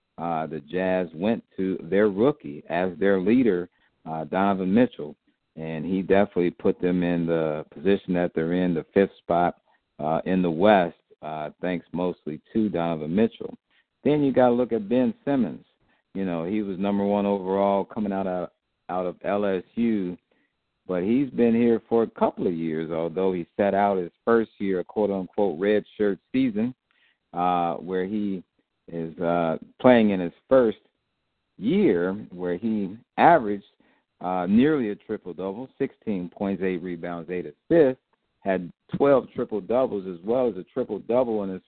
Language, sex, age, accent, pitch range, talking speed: English, male, 50-69, American, 90-115 Hz, 160 wpm